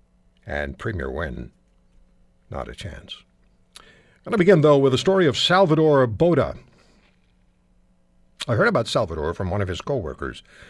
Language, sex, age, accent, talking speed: English, male, 60-79, American, 150 wpm